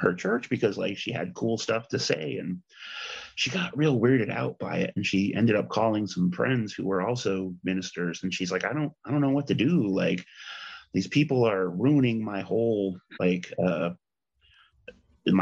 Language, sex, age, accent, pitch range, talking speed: English, male, 30-49, American, 95-115 Hz, 185 wpm